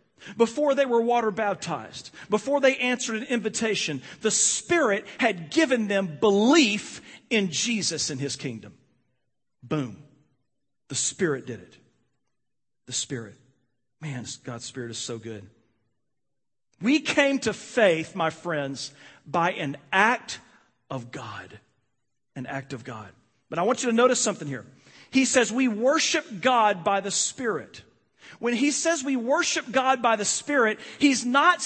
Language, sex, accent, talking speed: English, male, American, 145 wpm